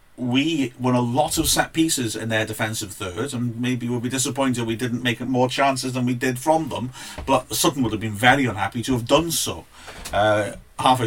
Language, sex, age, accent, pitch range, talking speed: English, male, 40-59, British, 110-135 Hz, 210 wpm